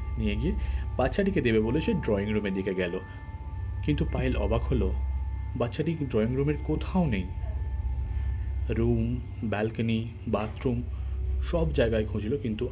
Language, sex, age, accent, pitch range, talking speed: Bengali, male, 30-49, native, 80-110 Hz, 125 wpm